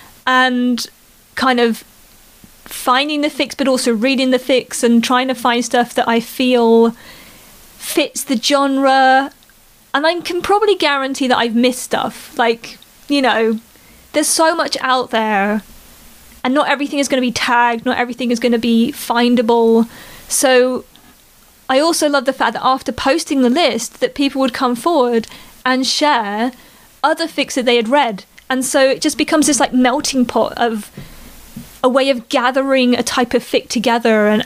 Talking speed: 170 wpm